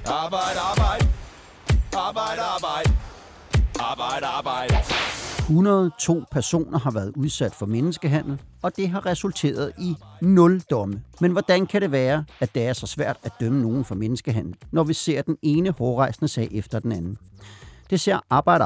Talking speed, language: 135 wpm, Danish